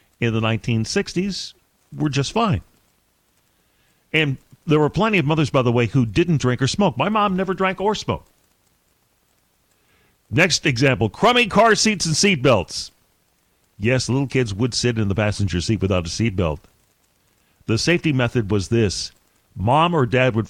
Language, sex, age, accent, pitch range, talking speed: English, male, 50-69, American, 105-150 Hz, 160 wpm